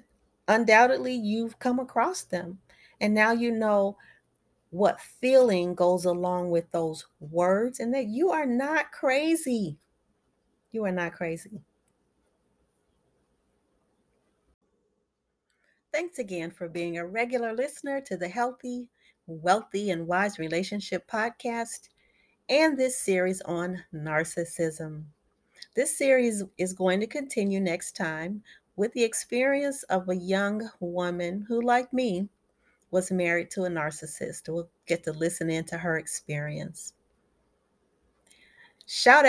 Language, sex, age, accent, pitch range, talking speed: English, female, 40-59, American, 175-245 Hz, 120 wpm